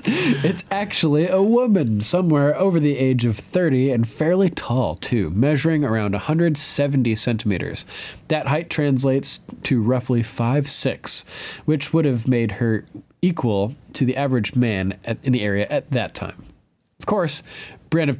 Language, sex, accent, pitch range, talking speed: English, male, American, 105-140 Hz, 145 wpm